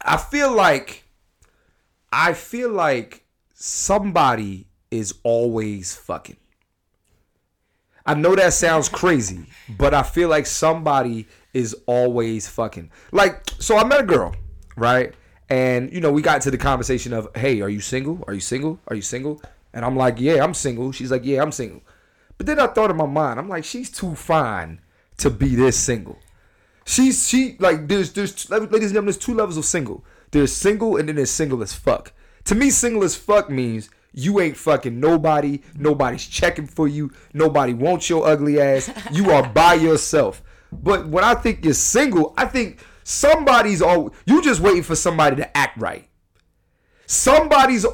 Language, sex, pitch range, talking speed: English, male, 120-190 Hz, 175 wpm